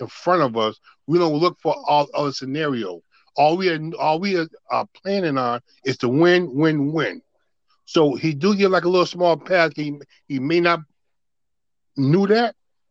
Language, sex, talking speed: English, male, 185 wpm